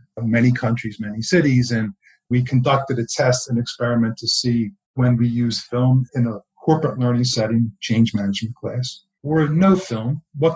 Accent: American